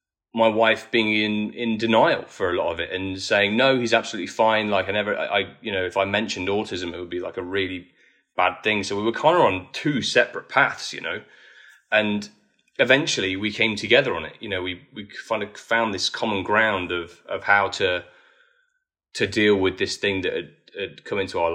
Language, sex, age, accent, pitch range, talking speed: English, male, 20-39, British, 95-115 Hz, 220 wpm